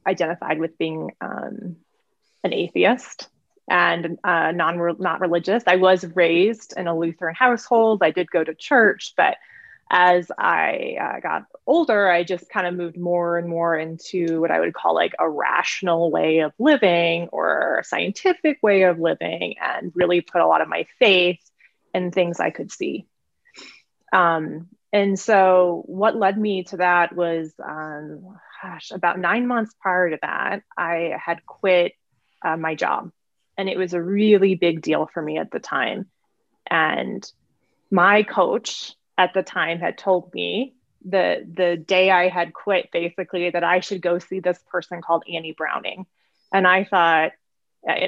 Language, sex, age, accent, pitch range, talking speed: English, female, 20-39, American, 170-200 Hz, 165 wpm